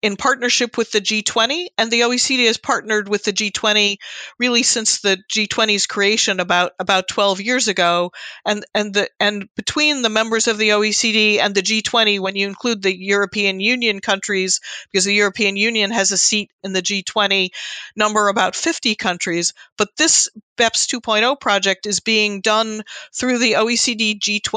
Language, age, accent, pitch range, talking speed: English, 50-69, American, 195-235 Hz, 170 wpm